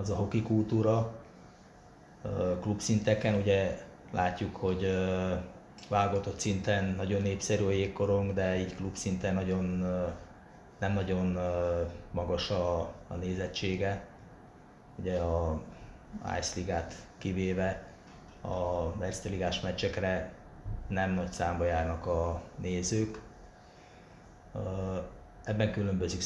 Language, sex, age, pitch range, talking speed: Hungarian, male, 20-39, 85-100 Hz, 85 wpm